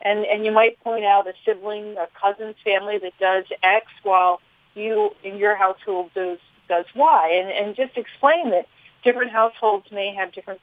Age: 50-69